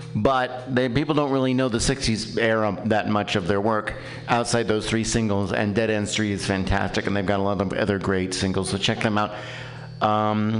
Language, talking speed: English, 215 wpm